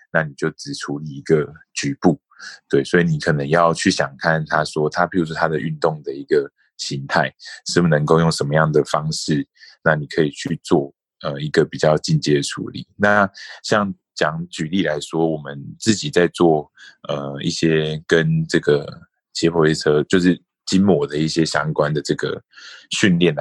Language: English